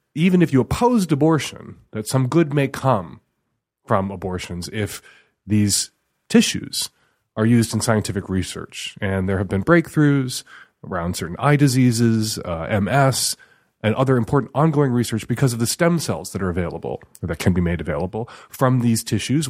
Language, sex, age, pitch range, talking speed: English, male, 30-49, 105-140 Hz, 165 wpm